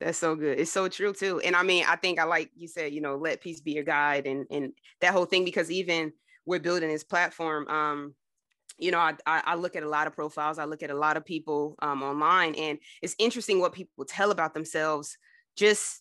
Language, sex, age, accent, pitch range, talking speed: English, female, 20-39, American, 160-185 Hz, 235 wpm